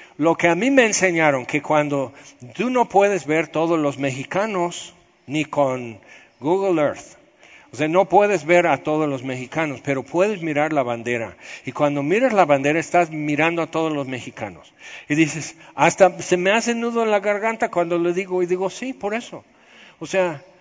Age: 60-79